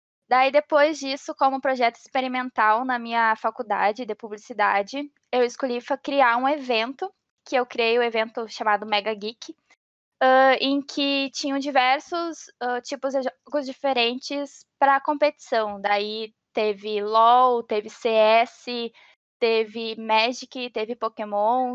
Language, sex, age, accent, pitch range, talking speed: Portuguese, female, 10-29, Brazilian, 215-260 Hz, 120 wpm